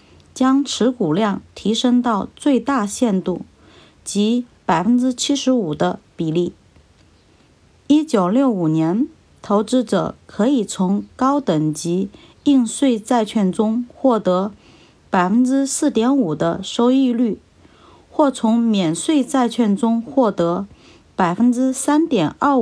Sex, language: female, Chinese